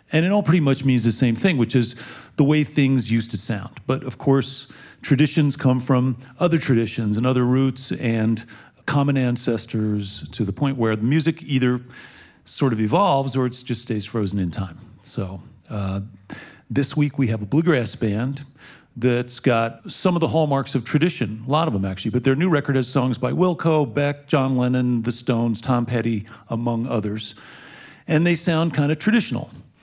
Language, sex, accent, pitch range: English, male, American, 115-145 Hz